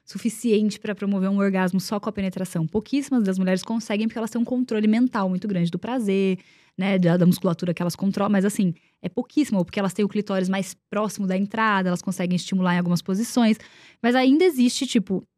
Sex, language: female, Portuguese